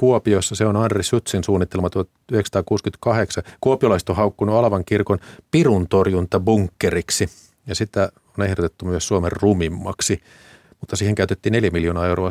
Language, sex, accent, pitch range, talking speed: Finnish, male, native, 95-125 Hz, 130 wpm